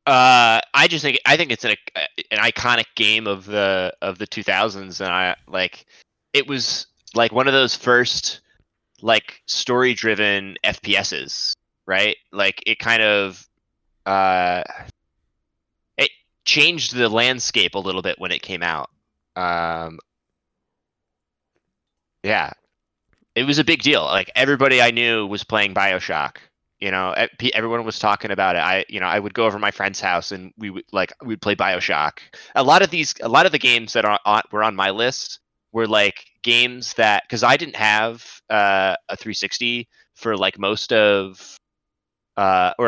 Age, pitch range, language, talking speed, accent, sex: 20-39, 100-120 Hz, English, 165 wpm, American, male